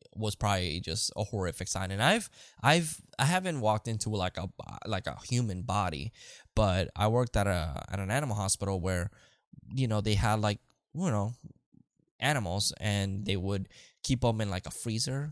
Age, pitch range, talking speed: 10-29, 95-125 Hz, 180 wpm